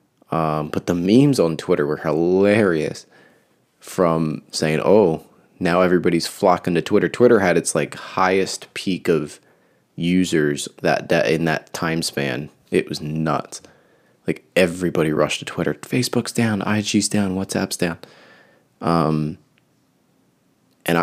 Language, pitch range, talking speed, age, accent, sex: English, 80-95 Hz, 130 wpm, 20-39, American, male